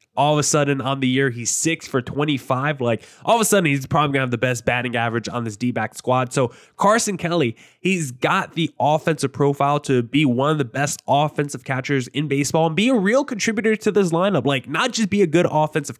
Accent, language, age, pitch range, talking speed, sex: American, English, 20-39, 135-170 Hz, 235 wpm, male